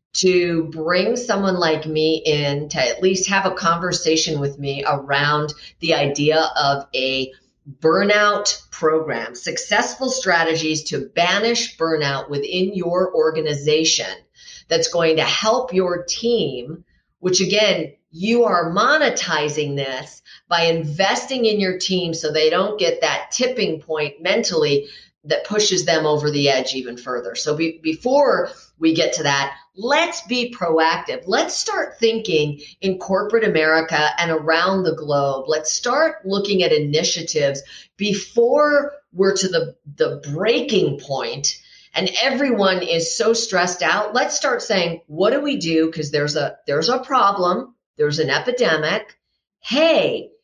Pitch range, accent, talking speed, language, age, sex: 155-210 Hz, American, 140 wpm, English, 50-69, female